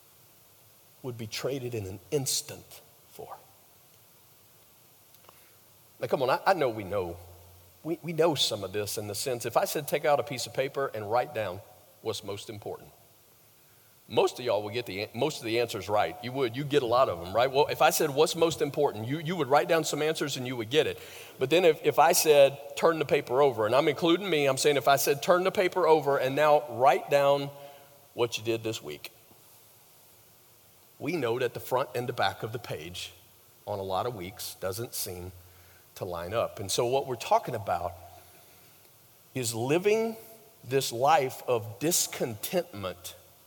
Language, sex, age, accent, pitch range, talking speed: English, male, 40-59, American, 115-165 Hz, 195 wpm